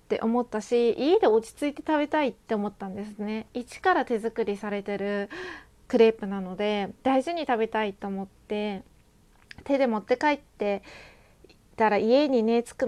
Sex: female